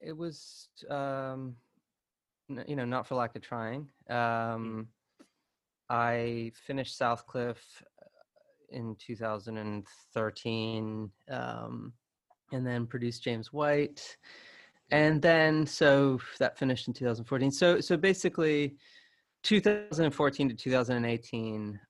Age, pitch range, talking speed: 20-39, 105-125 Hz, 120 wpm